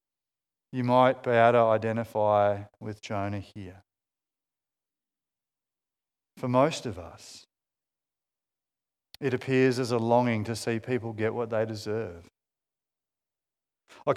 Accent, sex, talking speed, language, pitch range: Australian, male, 110 wpm, English, 110-135 Hz